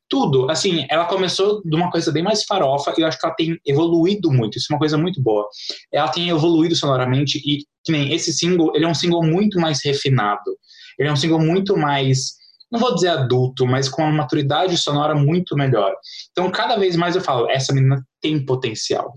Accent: Brazilian